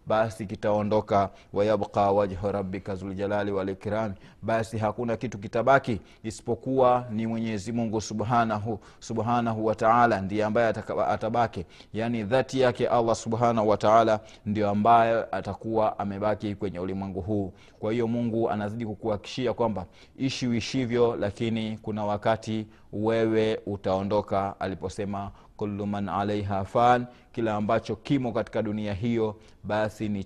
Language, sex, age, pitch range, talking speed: Swahili, male, 30-49, 105-115 Hz, 125 wpm